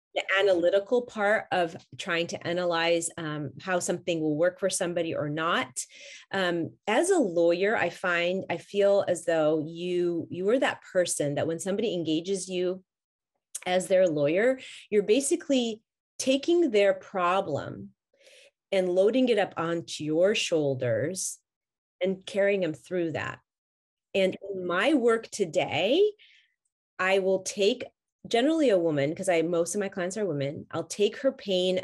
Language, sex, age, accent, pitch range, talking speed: English, female, 30-49, American, 160-195 Hz, 150 wpm